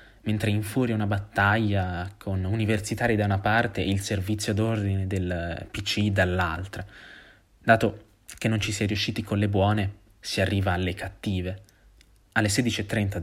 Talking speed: 145 wpm